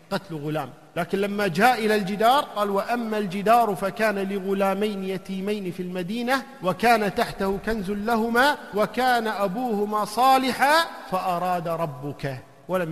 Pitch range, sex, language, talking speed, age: 165-235 Hz, male, Arabic, 115 wpm, 50-69